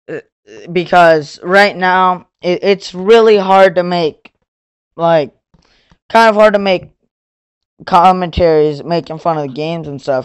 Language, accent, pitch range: English, American, 145-185 Hz